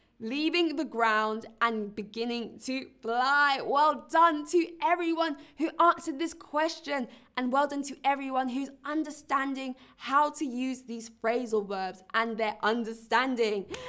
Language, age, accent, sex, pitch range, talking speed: English, 20-39, British, female, 205-285 Hz, 135 wpm